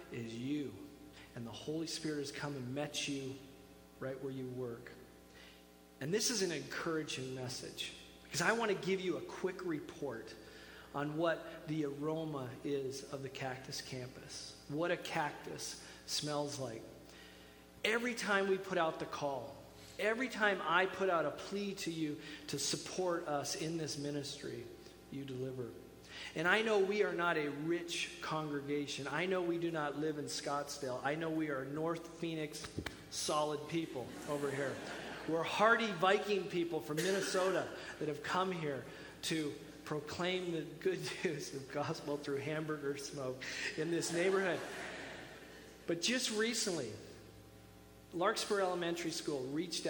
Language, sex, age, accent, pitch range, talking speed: English, male, 40-59, American, 135-170 Hz, 150 wpm